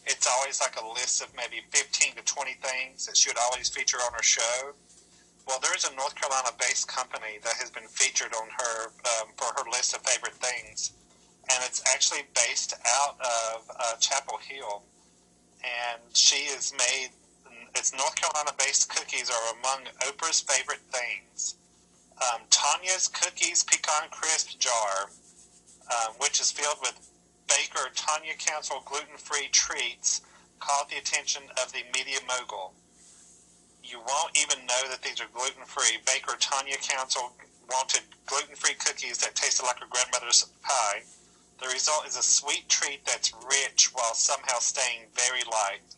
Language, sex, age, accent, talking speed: English, male, 40-59, American, 150 wpm